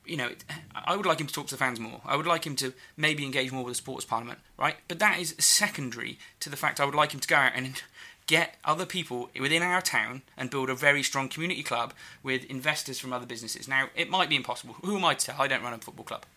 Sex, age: male, 20-39